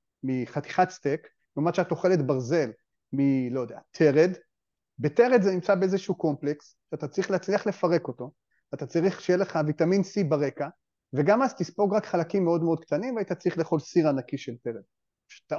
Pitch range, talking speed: 140-190 Hz, 160 wpm